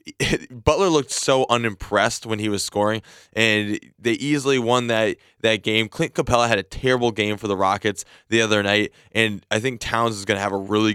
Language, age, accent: English, 20-39, American